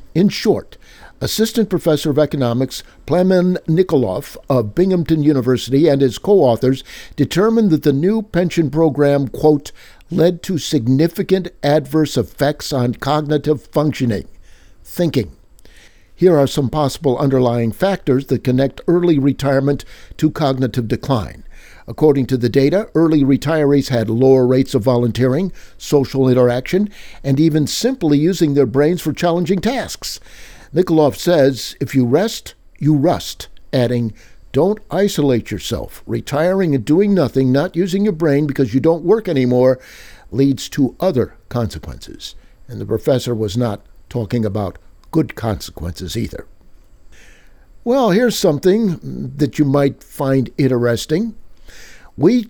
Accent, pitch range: American, 130-170 Hz